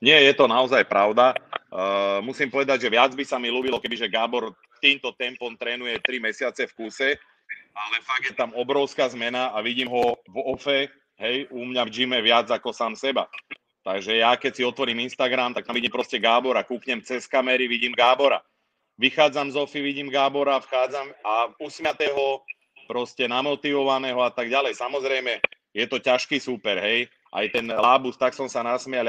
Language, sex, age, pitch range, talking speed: Czech, male, 30-49, 120-135 Hz, 175 wpm